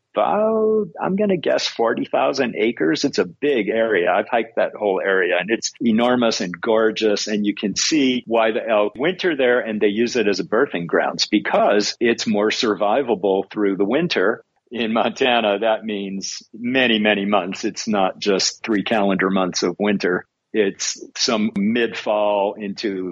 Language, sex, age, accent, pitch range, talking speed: English, male, 50-69, American, 105-125 Hz, 165 wpm